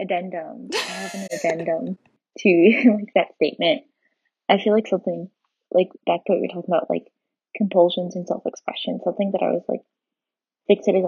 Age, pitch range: 20-39, 175-220 Hz